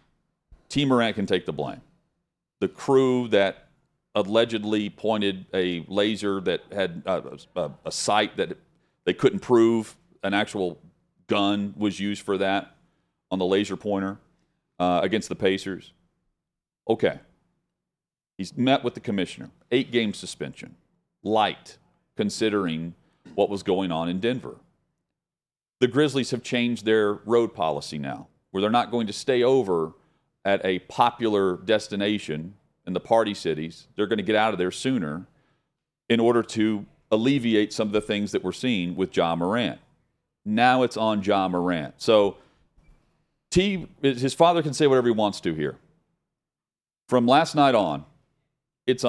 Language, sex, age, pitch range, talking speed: English, male, 40-59, 95-125 Hz, 145 wpm